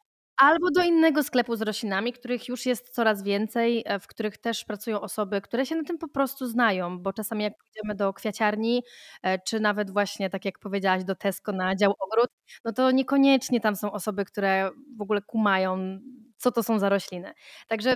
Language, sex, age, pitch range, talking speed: Polish, female, 20-39, 190-235 Hz, 185 wpm